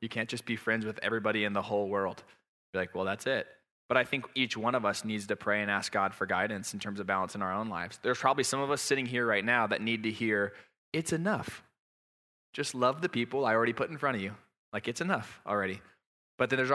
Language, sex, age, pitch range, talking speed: English, male, 20-39, 110-140 Hz, 260 wpm